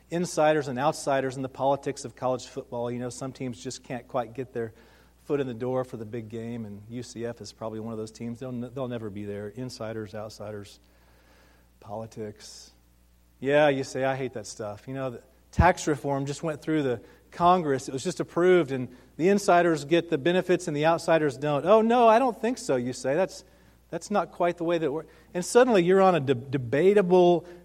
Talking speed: 210 wpm